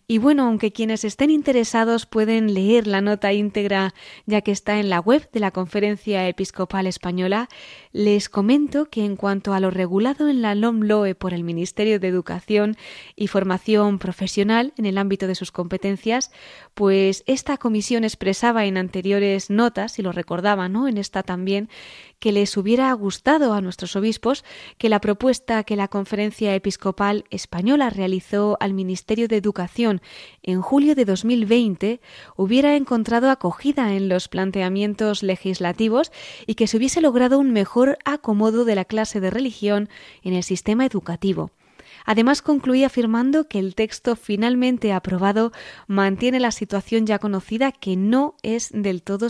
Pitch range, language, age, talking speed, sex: 195-230 Hz, Spanish, 20-39, 155 wpm, female